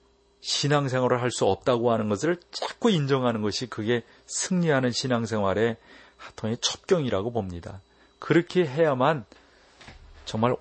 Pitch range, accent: 115-145 Hz, native